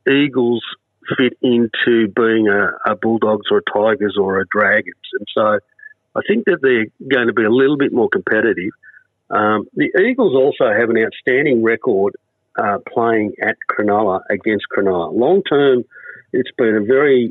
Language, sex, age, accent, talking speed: English, male, 50-69, Australian, 165 wpm